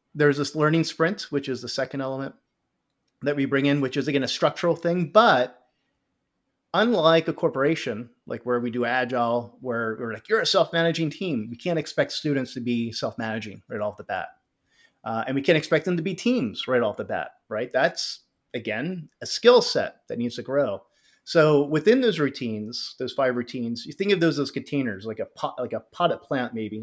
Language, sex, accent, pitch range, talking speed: English, male, American, 120-155 Hz, 205 wpm